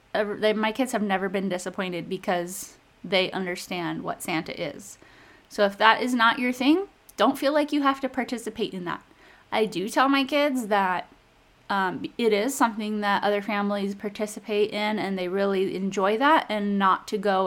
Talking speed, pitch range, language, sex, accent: 180 wpm, 195-240 Hz, English, female, American